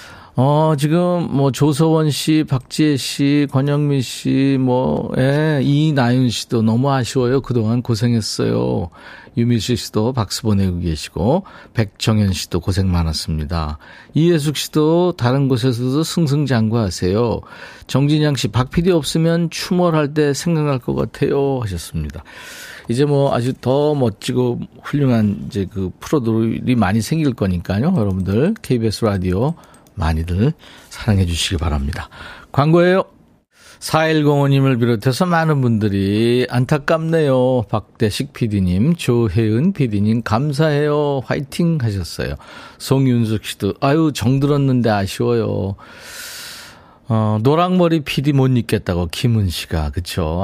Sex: male